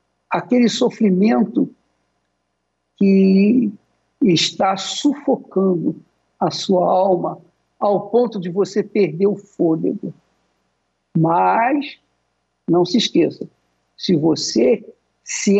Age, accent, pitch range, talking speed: 60-79, Brazilian, 175-240 Hz, 85 wpm